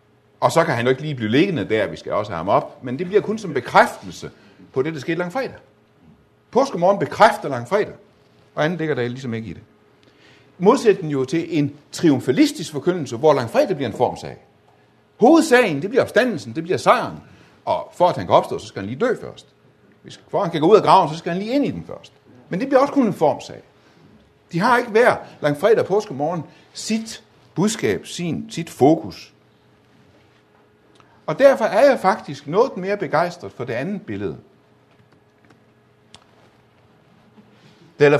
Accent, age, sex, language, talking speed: native, 60-79, male, Danish, 180 wpm